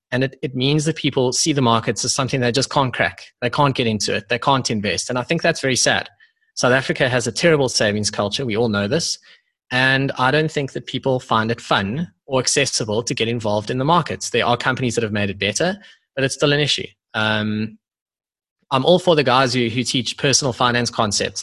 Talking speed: 230 wpm